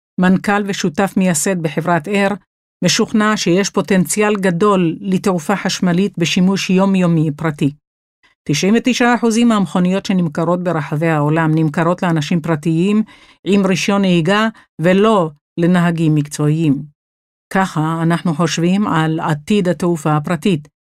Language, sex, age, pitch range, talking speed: Hebrew, female, 50-69, 165-205 Hz, 100 wpm